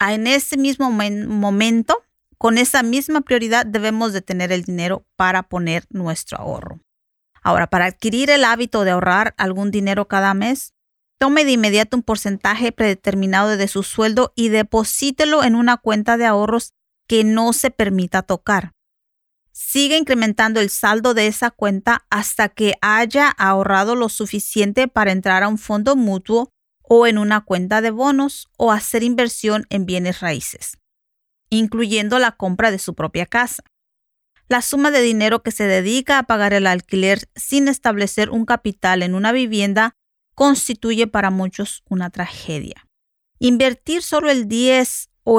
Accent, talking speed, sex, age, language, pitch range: American, 155 wpm, female, 30-49, English, 200-245 Hz